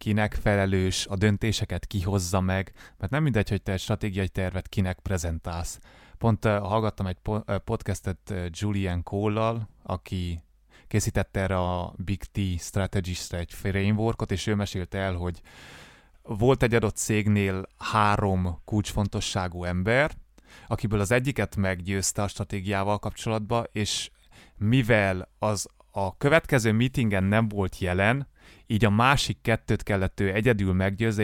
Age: 20-39